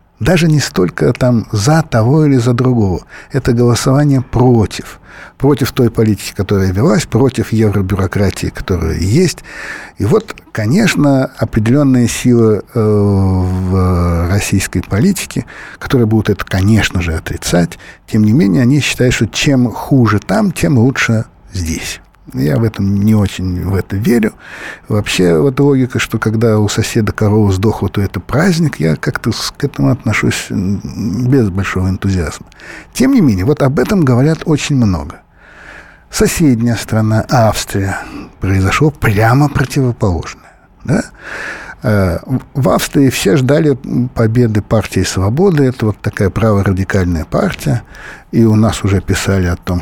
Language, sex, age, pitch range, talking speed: Russian, male, 60-79, 100-130 Hz, 130 wpm